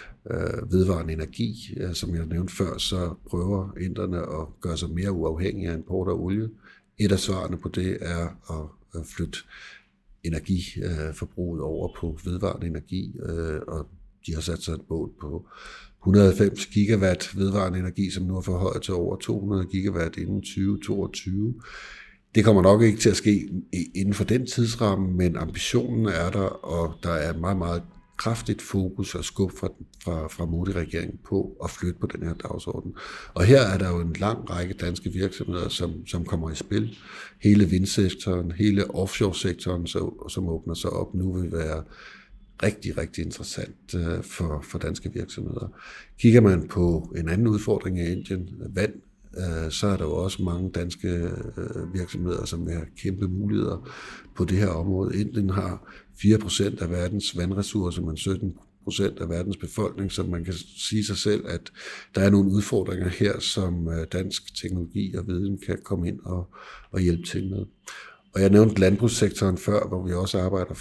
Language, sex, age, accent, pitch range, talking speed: Danish, male, 60-79, native, 85-100 Hz, 165 wpm